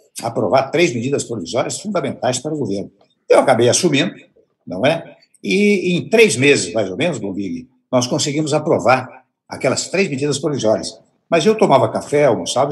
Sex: male